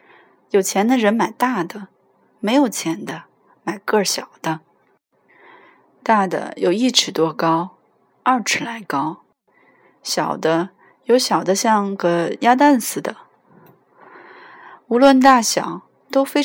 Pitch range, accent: 175-255 Hz, native